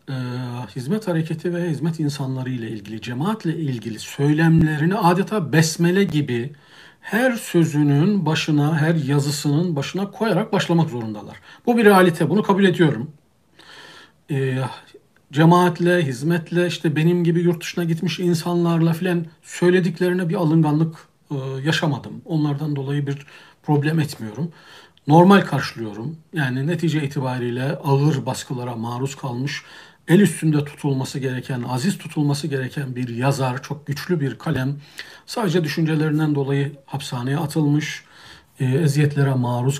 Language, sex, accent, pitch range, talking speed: Turkish, male, native, 135-170 Hz, 115 wpm